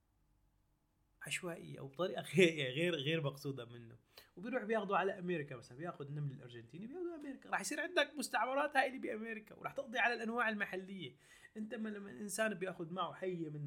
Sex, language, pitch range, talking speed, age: male, Arabic, 125-210 Hz, 160 wpm, 20-39